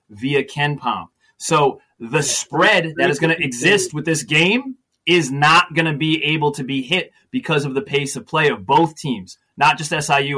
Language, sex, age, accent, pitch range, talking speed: English, male, 30-49, American, 145-195 Hz, 200 wpm